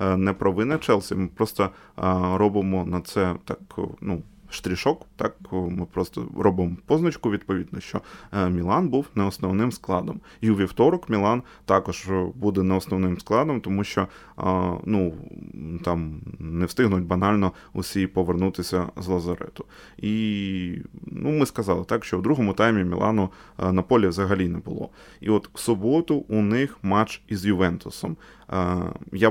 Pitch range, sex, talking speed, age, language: 90-110 Hz, male, 145 wpm, 20-39, Ukrainian